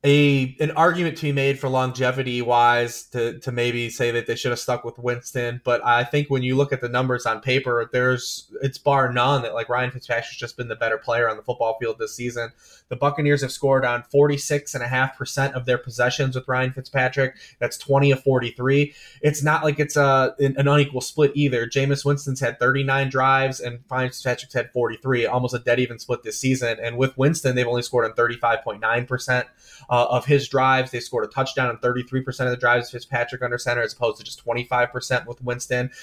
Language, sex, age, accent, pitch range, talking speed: English, male, 20-39, American, 120-140 Hz, 225 wpm